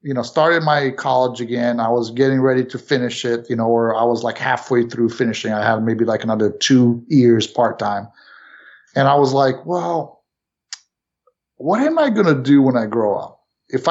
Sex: male